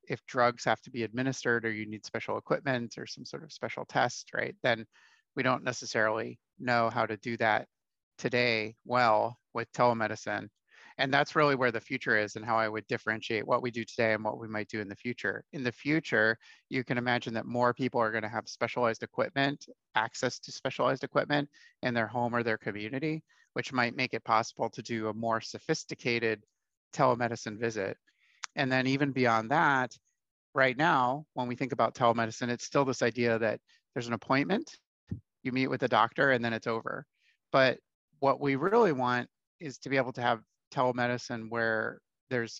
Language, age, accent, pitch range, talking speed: English, 30-49, American, 115-135 Hz, 190 wpm